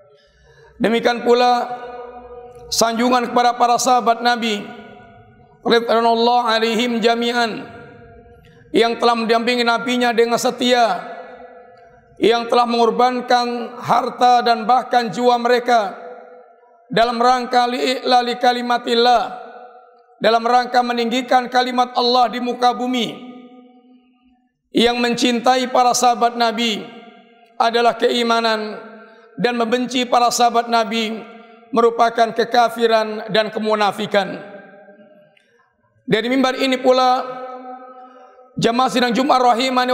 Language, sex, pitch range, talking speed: Indonesian, male, 235-250 Hz, 90 wpm